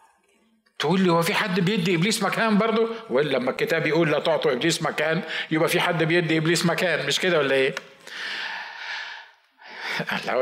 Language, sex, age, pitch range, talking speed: Arabic, male, 50-69, 165-215 Hz, 155 wpm